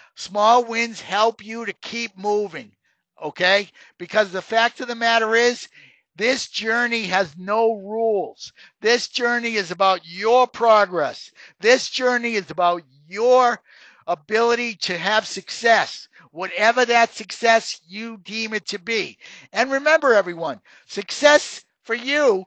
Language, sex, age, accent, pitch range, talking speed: English, male, 50-69, American, 195-245 Hz, 130 wpm